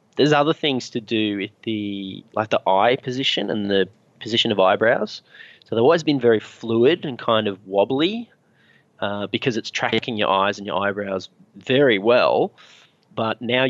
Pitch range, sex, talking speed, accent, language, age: 105-130 Hz, male, 170 wpm, Australian, English, 20-39